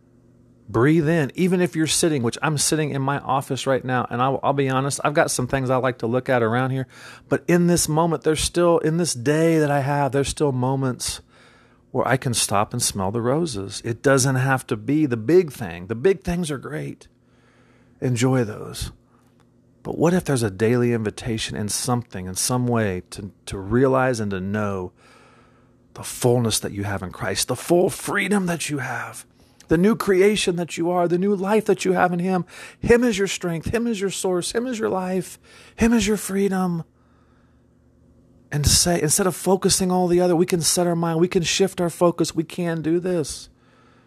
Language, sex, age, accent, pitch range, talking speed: English, male, 40-59, American, 120-170 Hz, 205 wpm